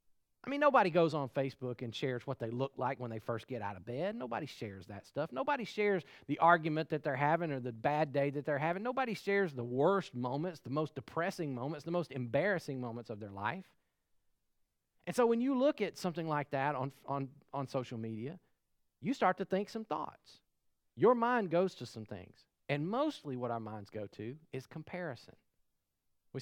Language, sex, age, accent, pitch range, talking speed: English, male, 40-59, American, 115-165 Hz, 200 wpm